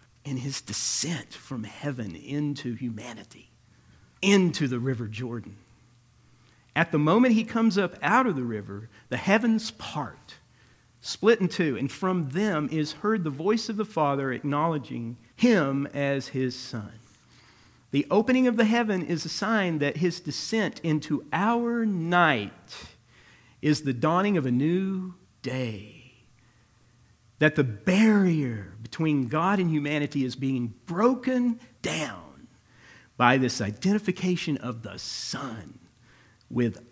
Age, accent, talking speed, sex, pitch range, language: 50-69, American, 130 wpm, male, 120-180 Hz, English